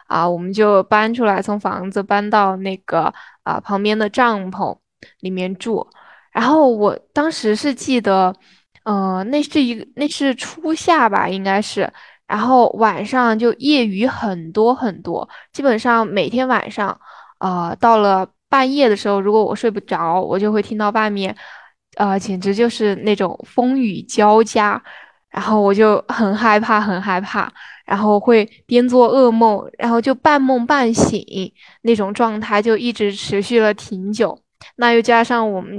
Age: 10-29